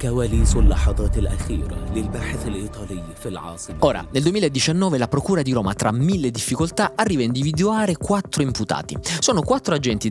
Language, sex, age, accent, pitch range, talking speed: Italian, male, 30-49, native, 100-165 Hz, 105 wpm